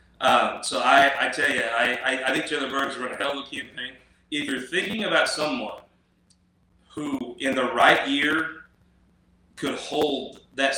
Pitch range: 120-140 Hz